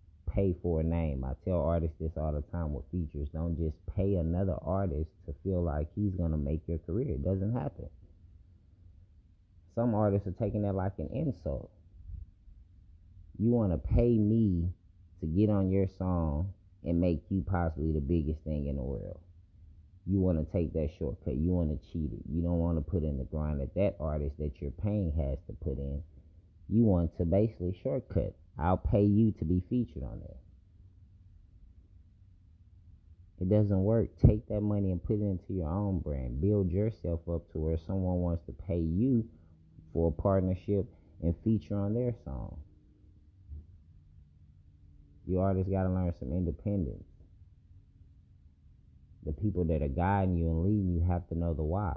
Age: 30-49